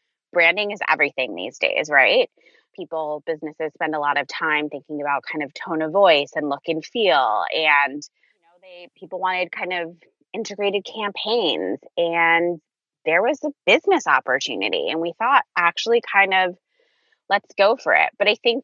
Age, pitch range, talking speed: 20-39, 165-205 Hz, 170 wpm